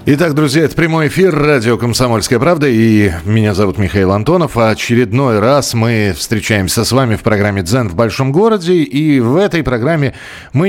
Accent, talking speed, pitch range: native, 175 wpm, 105-145 Hz